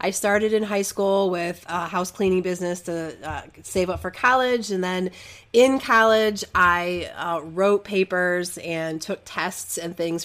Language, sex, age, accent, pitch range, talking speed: English, female, 30-49, American, 170-200 Hz, 170 wpm